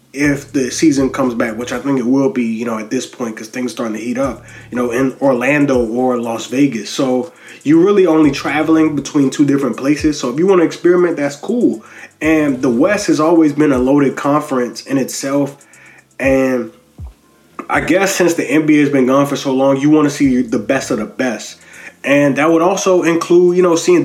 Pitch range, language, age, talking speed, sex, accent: 135-195 Hz, English, 20-39, 215 wpm, male, American